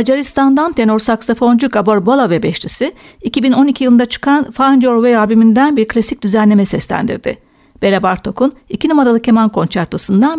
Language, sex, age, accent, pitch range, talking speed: Turkish, female, 60-79, native, 210-255 Hz, 140 wpm